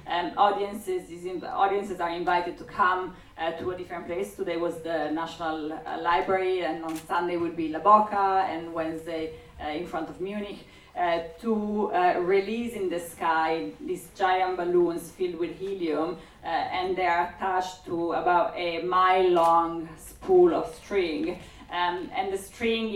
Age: 30-49